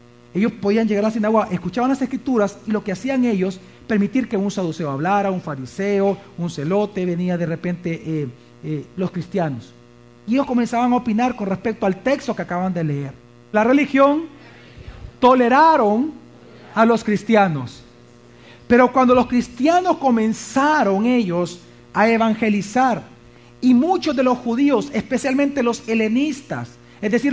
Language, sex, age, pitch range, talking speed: Spanish, male, 40-59, 180-255 Hz, 145 wpm